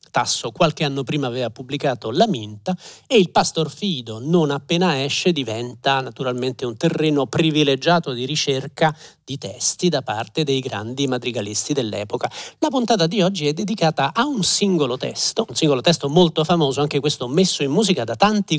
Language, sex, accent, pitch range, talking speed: Italian, male, native, 130-165 Hz, 170 wpm